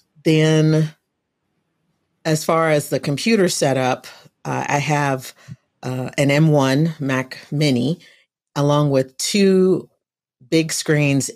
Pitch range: 125-150 Hz